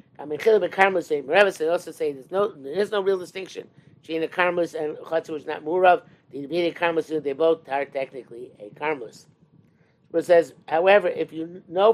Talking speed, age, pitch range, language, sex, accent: 195 wpm, 50-69, 150-185 Hz, English, male, American